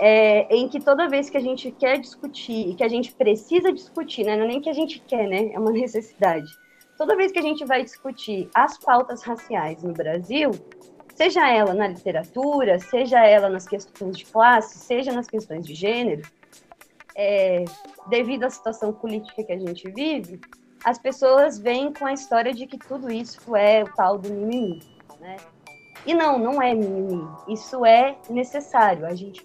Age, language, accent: 20-39, Portuguese, Brazilian